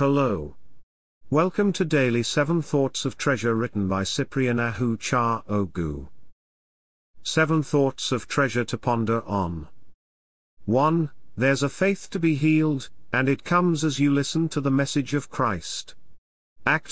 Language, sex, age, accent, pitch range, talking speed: English, male, 50-69, British, 105-145 Hz, 140 wpm